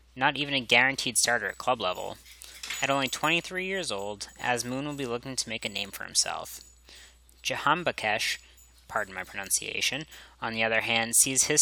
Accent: American